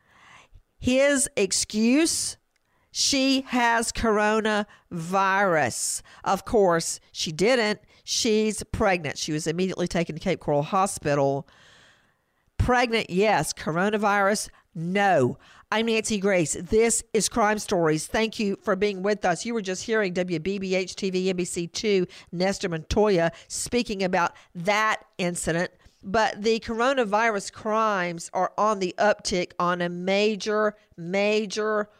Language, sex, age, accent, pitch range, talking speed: English, female, 50-69, American, 180-220 Hz, 115 wpm